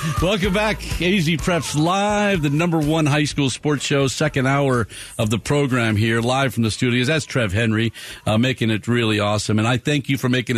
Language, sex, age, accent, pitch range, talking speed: English, male, 50-69, American, 115-150 Hz, 205 wpm